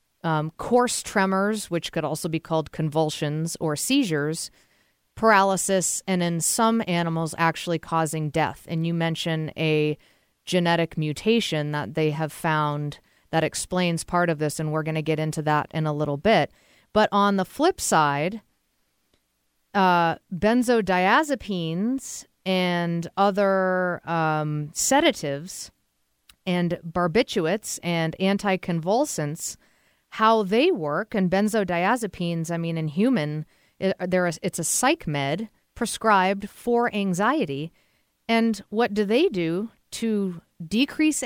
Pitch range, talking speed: 160-220 Hz, 120 wpm